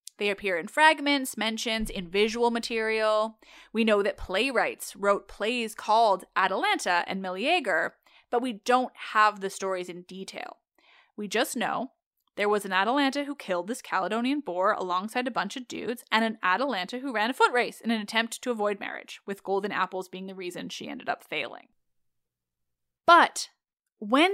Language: English